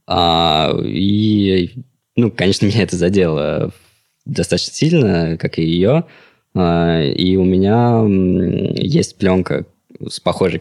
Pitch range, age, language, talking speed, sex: 85-105 Hz, 20-39, Russian, 100 wpm, male